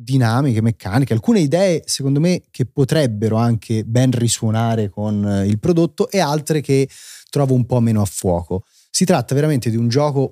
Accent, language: native, Italian